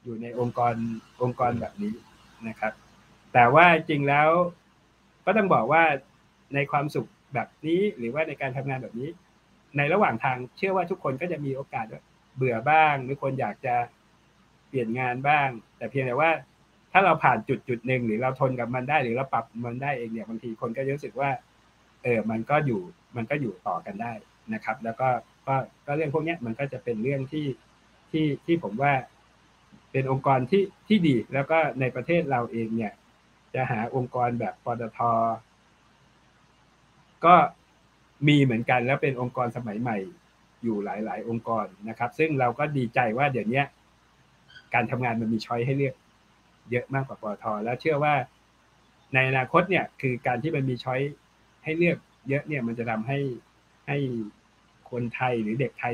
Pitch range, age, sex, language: 115-145 Hz, 60-79, male, Thai